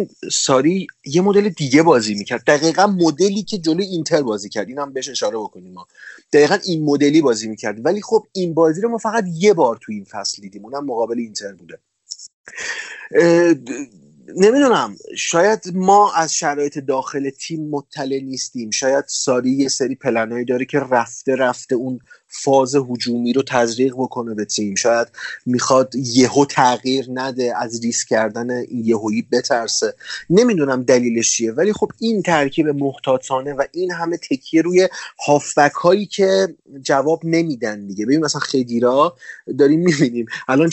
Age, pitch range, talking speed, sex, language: 30-49, 125-170 Hz, 150 wpm, male, Persian